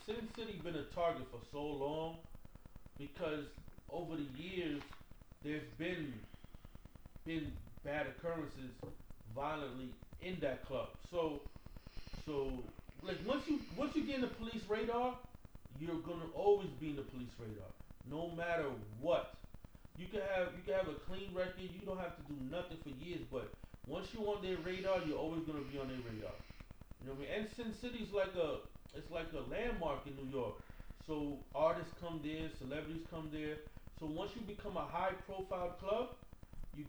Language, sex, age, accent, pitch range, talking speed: English, male, 30-49, American, 125-190 Hz, 175 wpm